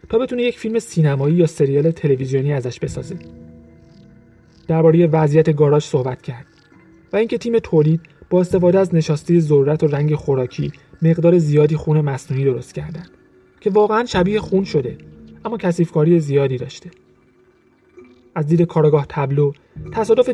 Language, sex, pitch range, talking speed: Persian, male, 135-175 Hz, 140 wpm